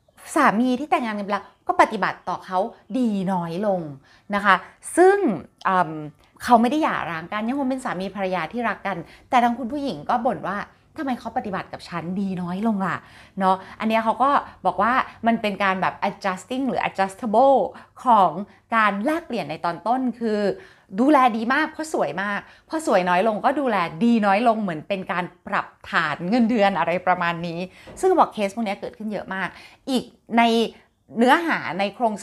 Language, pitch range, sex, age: Thai, 180-245 Hz, female, 20-39